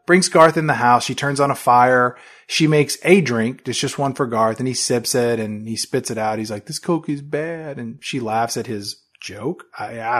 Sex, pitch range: male, 125-175 Hz